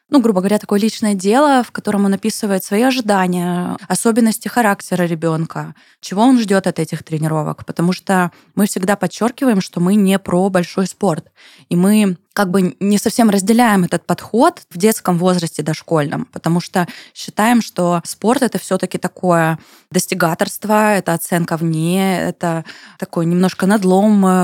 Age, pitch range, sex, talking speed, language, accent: 20-39, 180-215 Hz, female, 150 wpm, Russian, native